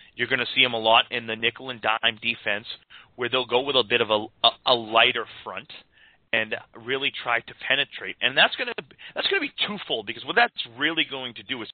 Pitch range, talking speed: 110-130 Hz, 225 wpm